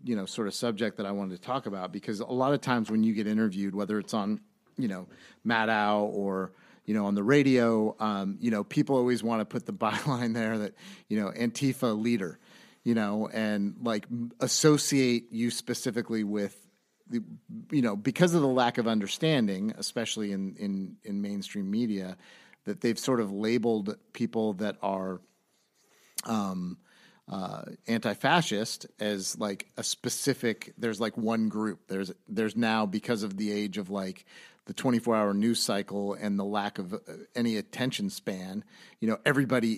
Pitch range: 105-140 Hz